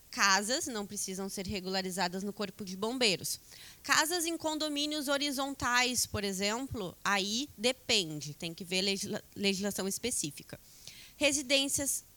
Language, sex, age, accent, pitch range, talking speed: Portuguese, female, 20-39, Brazilian, 195-270 Hz, 120 wpm